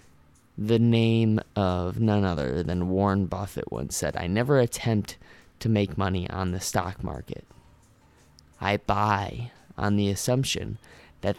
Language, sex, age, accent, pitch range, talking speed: English, male, 20-39, American, 95-115 Hz, 135 wpm